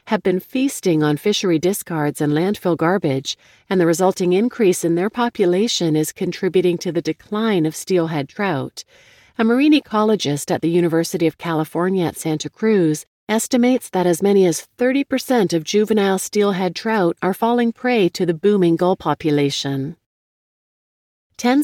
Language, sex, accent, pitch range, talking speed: English, female, American, 160-210 Hz, 150 wpm